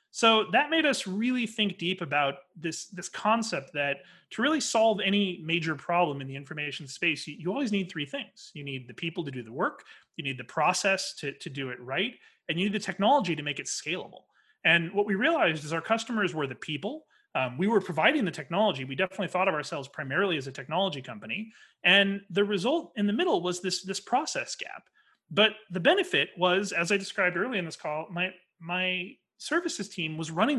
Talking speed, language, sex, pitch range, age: 210 wpm, English, male, 160-210 Hz, 30-49